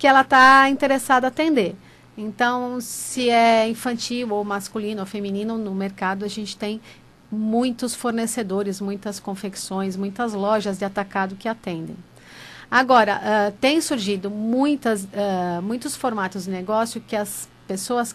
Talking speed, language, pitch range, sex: 135 wpm, Portuguese, 200-235 Hz, female